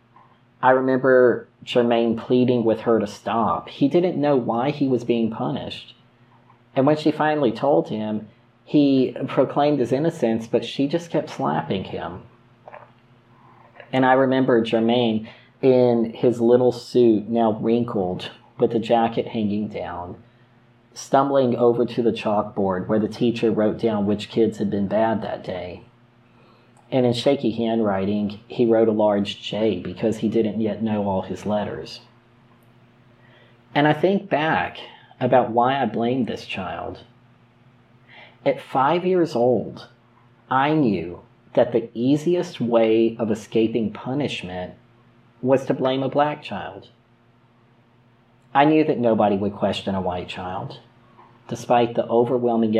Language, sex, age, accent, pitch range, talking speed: English, male, 40-59, American, 115-125 Hz, 140 wpm